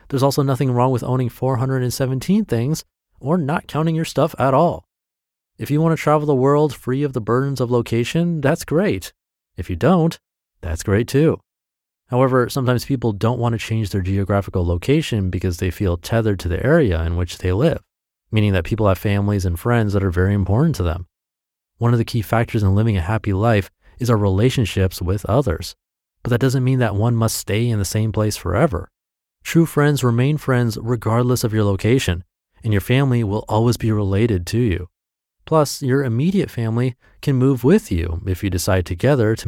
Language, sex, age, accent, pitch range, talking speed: English, male, 30-49, American, 100-130 Hz, 195 wpm